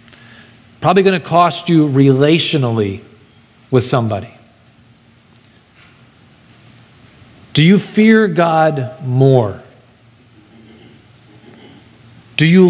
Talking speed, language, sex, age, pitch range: 70 wpm, English, male, 40-59, 120-160 Hz